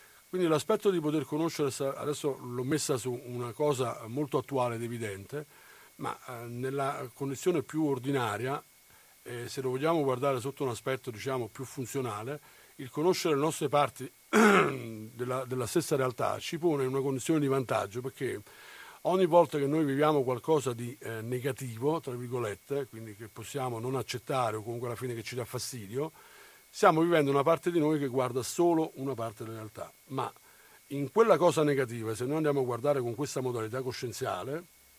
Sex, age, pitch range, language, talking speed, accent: male, 60-79, 125-155 Hz, Italian, 165 wpm, native